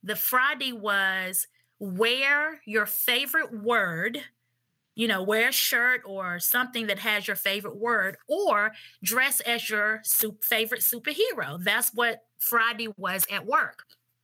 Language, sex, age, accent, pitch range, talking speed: English, female, 30-49, American, 200-250 Hz, 130 wpm